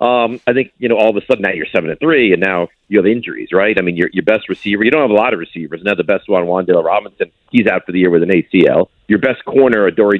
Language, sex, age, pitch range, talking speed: English, male, 50-69, 105-145 Hz, 300 wpm